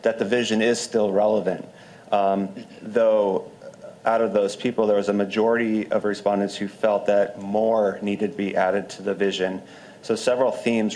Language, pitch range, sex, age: English, 100-115 Hz, male, 30-49